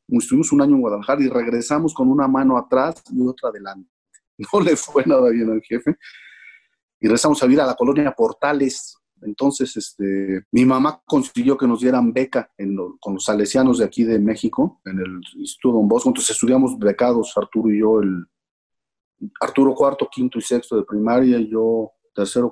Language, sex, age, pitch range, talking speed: Spanish, male, 40-59, 105-135 Hz, 185 wpm